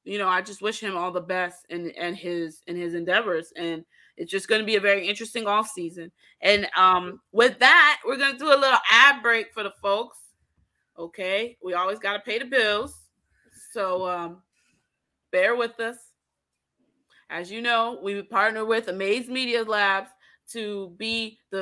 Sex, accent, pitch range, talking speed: female, American, 190-260 Hz, 185 wpm